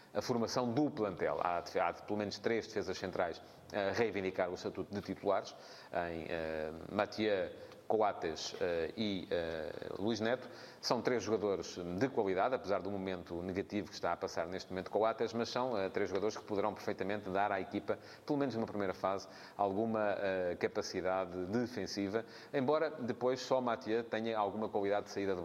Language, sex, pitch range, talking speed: Portuguese, male, 100-120 Hz, 170 wpm